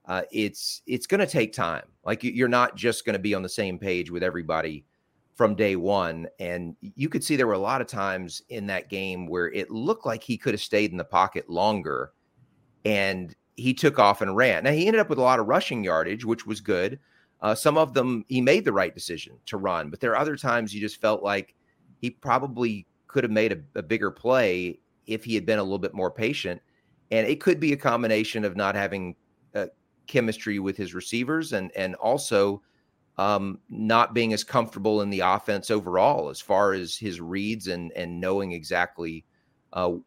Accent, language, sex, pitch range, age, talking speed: American, English, male, 90-115 Hz, 30-49, 210 wpm